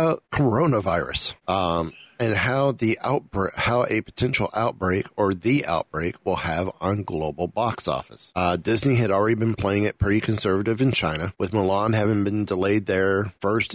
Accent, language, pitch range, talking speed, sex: American, English, 95-120 Hz, 165 wpm, male